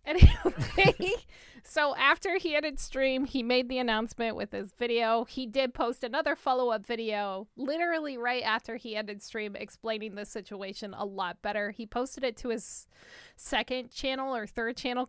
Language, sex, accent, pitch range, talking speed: English, female, American, 220-275 Hz, 165 wpm